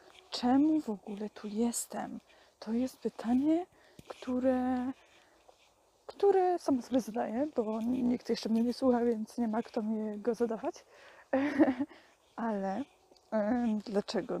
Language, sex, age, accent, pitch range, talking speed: Polish, female, 20-39, native, 215-255 Hz, 120 wpm